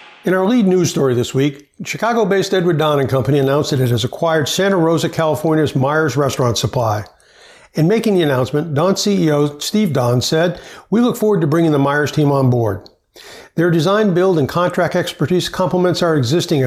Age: 60-79